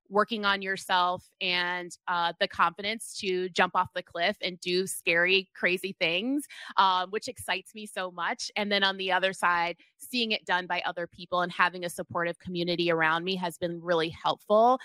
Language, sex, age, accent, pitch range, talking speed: English, female, 20-39, American, 180-220 Hz, 185 wpm